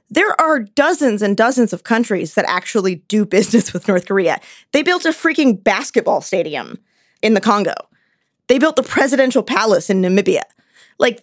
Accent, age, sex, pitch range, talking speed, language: American, 20-39, female, 205-270 Hz, 165 wpm, English